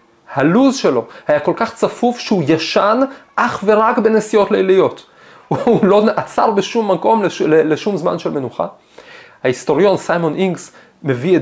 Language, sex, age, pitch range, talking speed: Hebrew, male, 30-49, 145-210 Hz, 130 wpm